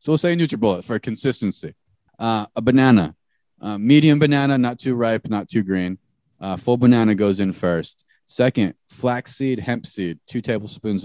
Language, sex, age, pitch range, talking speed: English, male, 30-49, 100-125 Hz, 165 wpm